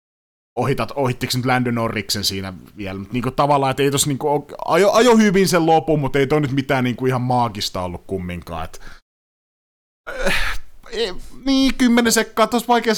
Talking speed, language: 160 wpm, Finnish